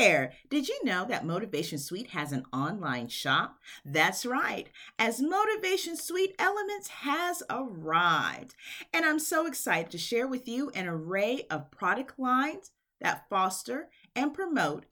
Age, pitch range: 40-59, 175-280 Hz